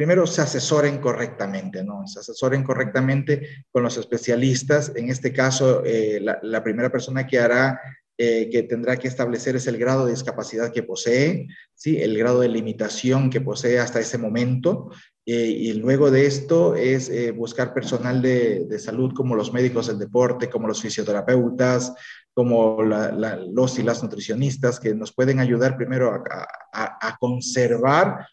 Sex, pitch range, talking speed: male, 115-135 Hz, 165 wpm